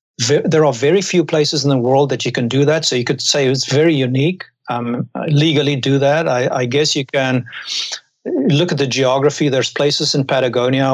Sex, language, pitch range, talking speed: male, English, 125-145 Hz, 205 wpm